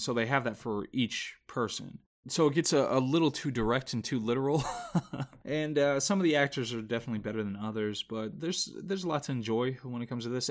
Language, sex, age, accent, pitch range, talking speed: English, male, 20-39, American, 110-140 Hz, 235 wpm